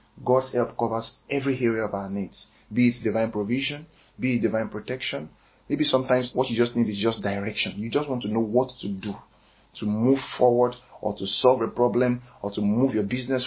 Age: 30-49